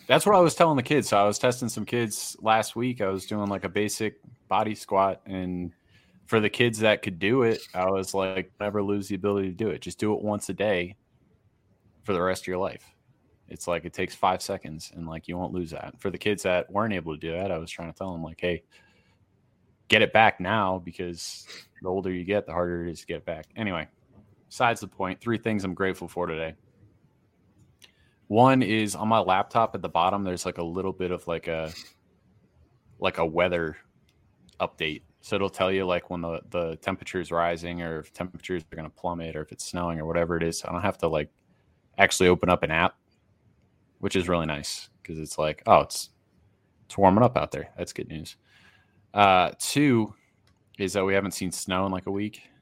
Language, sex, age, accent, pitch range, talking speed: English, male, 20-39, American, 90-105 Hz, 220 wpm